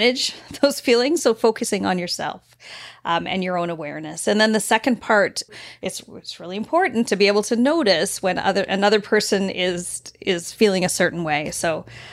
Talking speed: 180 wpm